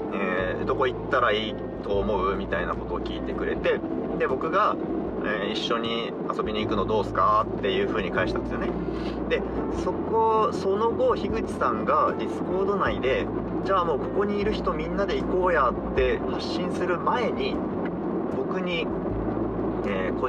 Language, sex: Japanese, male